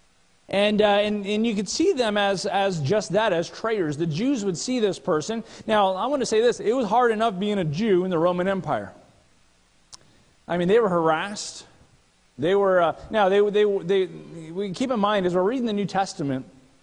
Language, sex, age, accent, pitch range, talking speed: English, male, 40-59, American, 170-215 Hz, 215 wpm